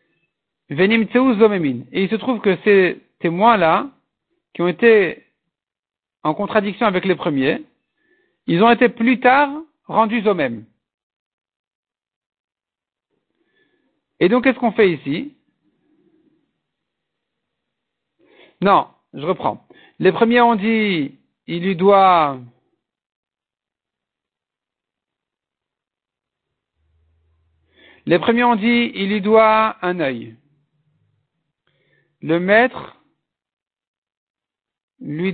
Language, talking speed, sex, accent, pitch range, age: French, 85 wpm, male, French, 180-240 Hz, 50-69